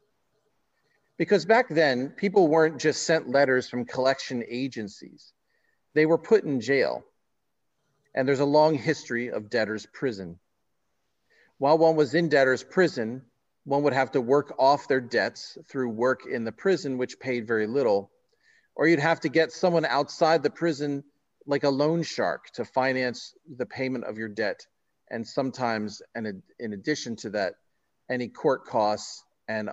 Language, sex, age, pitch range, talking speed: English, male, 40-59, 110-160 Hz, 155 wpm